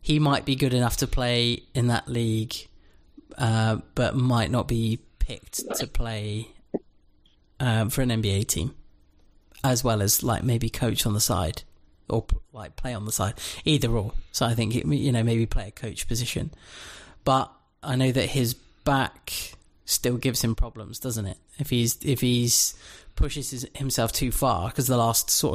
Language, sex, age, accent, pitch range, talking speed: English, male, 30-49, British, 110-130 Hz, 180 wpm